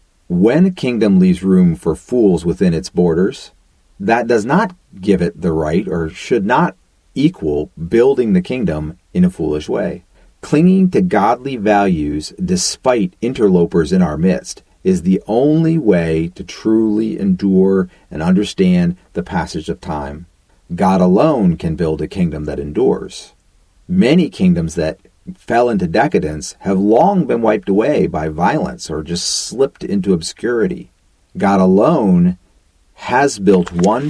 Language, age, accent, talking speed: English, 40-59, American, 145 wpm